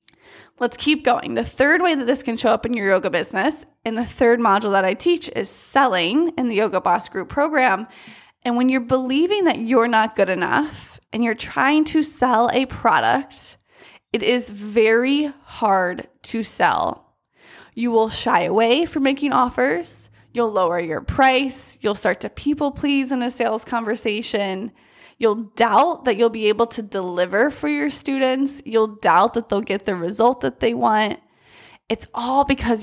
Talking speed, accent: 175 wpm, American